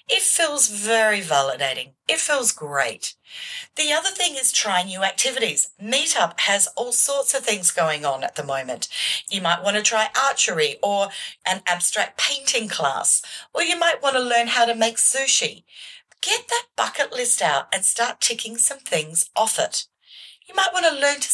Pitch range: 175-270 Hz